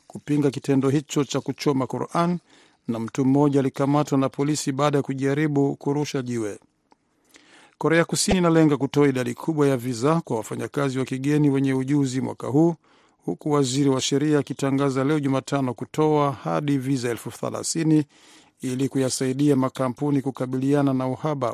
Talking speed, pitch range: 140 wpm, 130-150 Hz